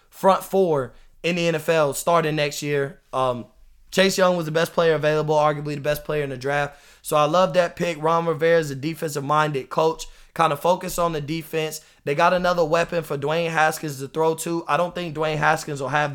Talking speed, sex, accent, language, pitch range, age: 210 wpm, male, American, English, 145-170 Hz, 20-39